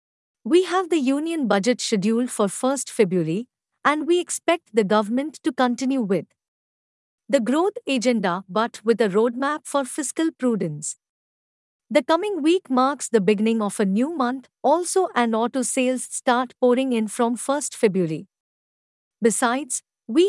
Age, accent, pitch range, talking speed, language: 50-69, Indian, 215-295 Hz, 145 wpm, English